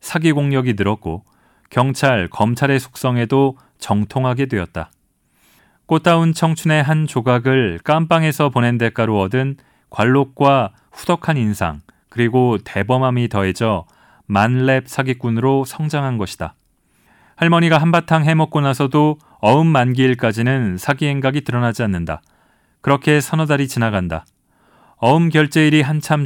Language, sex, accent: Korean, male, native